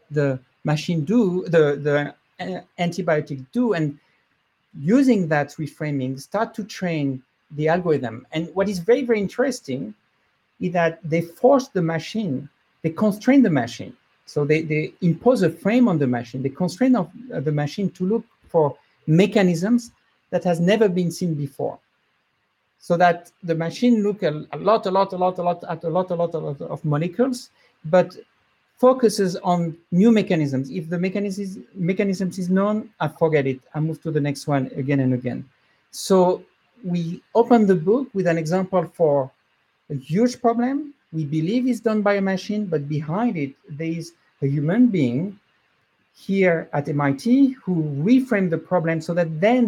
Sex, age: male, 50-69